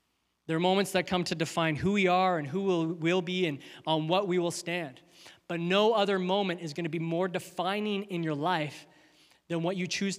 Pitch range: 180-245 Hz